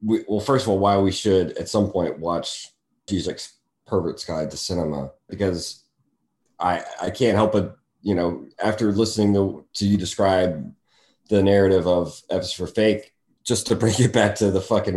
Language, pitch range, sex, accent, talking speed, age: English, 85-105 Hz, male, American, 180 wpm, 30-49